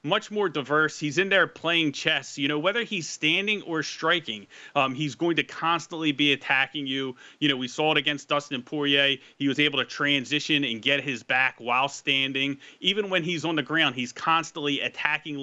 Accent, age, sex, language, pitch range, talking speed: American, 30-49, male, English, 135-160 Hz, 200 wpm